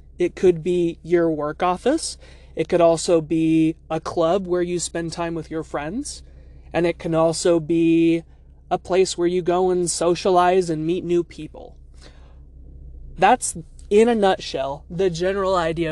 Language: English